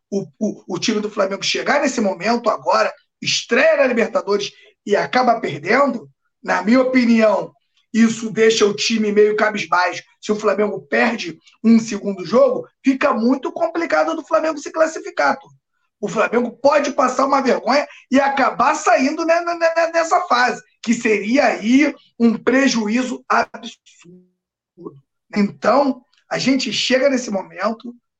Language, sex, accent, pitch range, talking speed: Portuguese, male, Brazilian, 205-275 Hz, 130 wpm